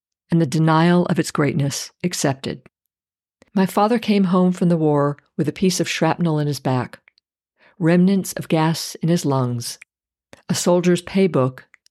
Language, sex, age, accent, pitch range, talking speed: English, female, 50-69, American, 145-185 Hz, 155 wpm